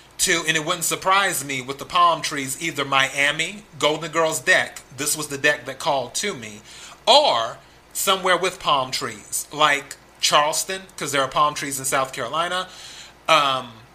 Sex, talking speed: male, 165 wpm